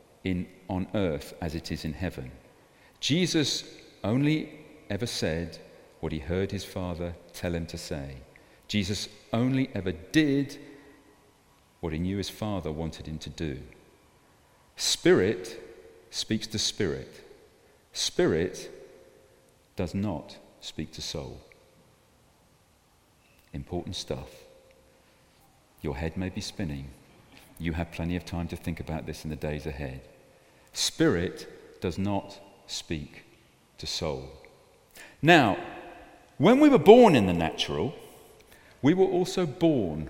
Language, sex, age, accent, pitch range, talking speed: English, male, 50-69, British, 80-115 Hz, 120 wpm